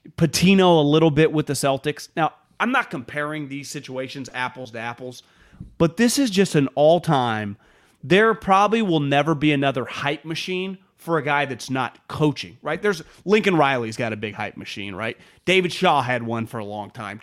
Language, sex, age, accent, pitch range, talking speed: English, male, 30-49, American, 125-175 Hz, 190 wpm